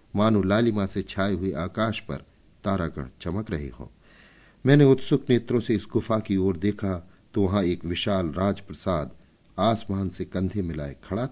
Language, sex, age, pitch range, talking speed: Hindi, male, 50-69, 85-120 Hz, 160 wpm